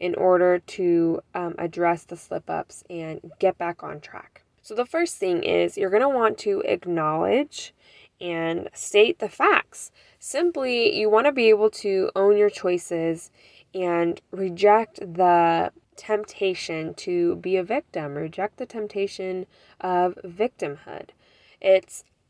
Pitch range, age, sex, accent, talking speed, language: 175-210 Hz, 10-29, female, American, 130 wpm, English